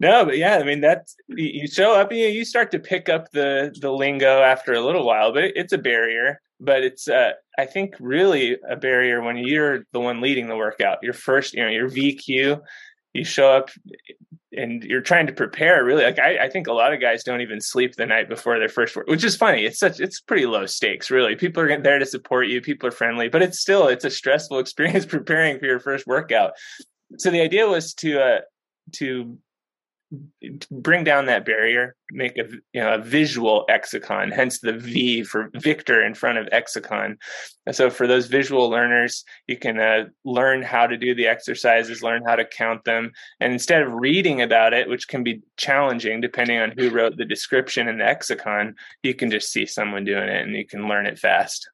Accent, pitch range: American, 120-150 Hz